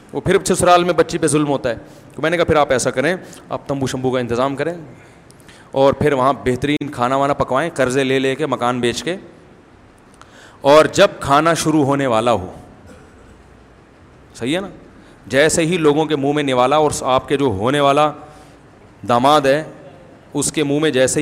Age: 30-49